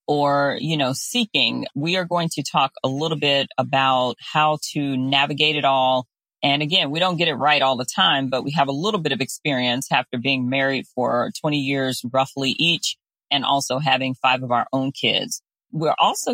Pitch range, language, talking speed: 135-155 Hz, English, 200 wpm